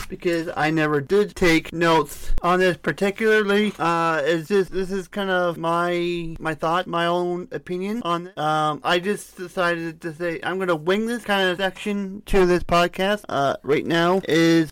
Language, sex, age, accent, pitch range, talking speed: English, male, 30-49, American, 155-185 Hz, 175 wpm